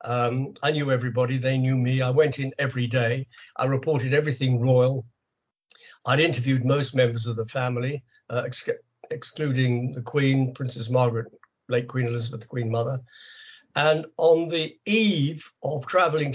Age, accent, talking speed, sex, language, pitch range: 60-79, British, 150 wpm, male, English, 120-145 Hz